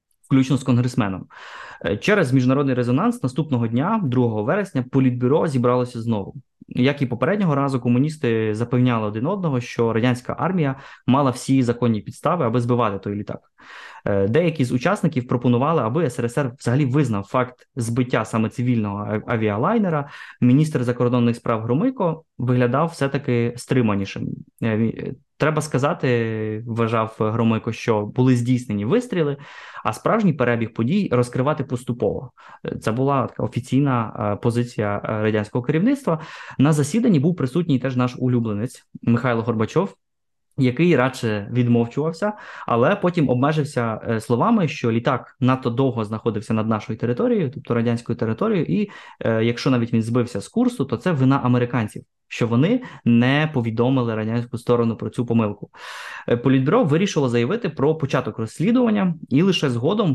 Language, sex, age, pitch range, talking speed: Ukrainian, male, 20-39, 115-145 Hz, 130 wpm